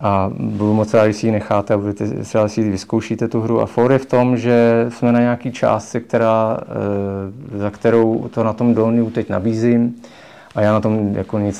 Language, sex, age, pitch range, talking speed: English, male, 30-49, 100-115 Hz, 200 wpm